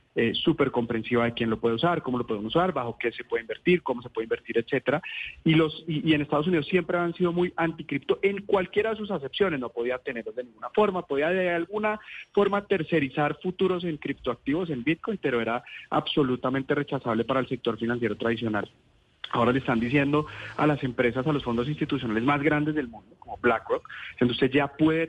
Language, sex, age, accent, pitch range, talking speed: Spanish, male, 30-49, Colombian, 120-155 Hz, 200 wpm